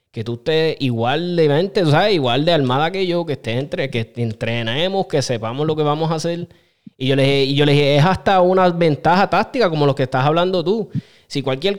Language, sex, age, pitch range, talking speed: Spanish, male, 20-39, 140-185 Hz, 210 wpm